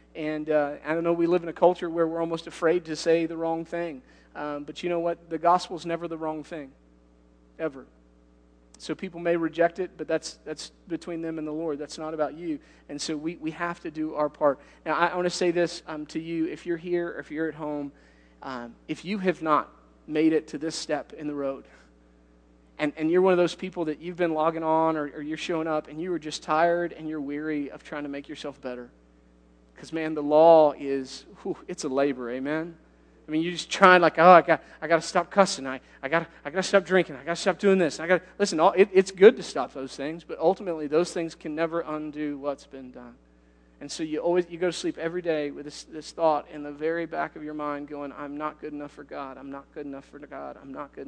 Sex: male